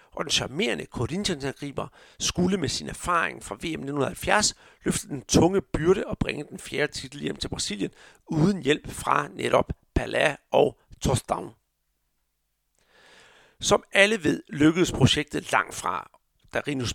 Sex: male